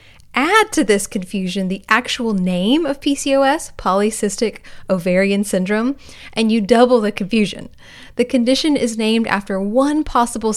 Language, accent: English, American